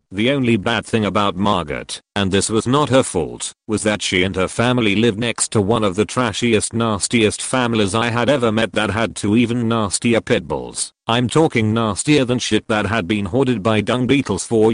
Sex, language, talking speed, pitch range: male, English, 210 wpm, 105-125 Hz